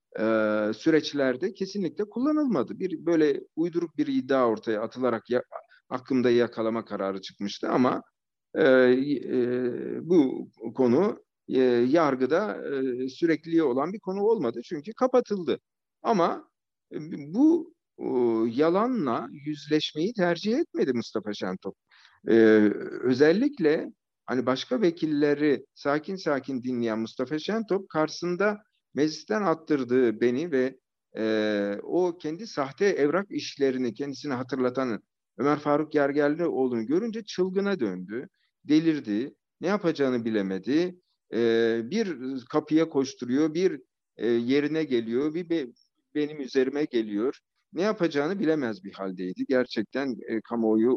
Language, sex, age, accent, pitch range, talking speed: Turkish, male, 60-79, native, 120-170 Hz, 110 wpm